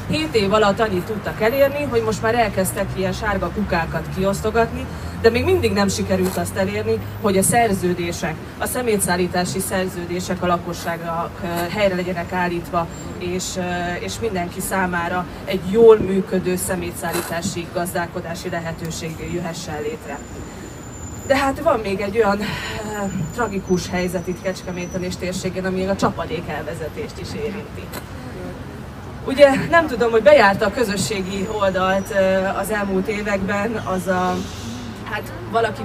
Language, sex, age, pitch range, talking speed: Hungarian, female, 20-39, 175-205 Hz, 130 wpm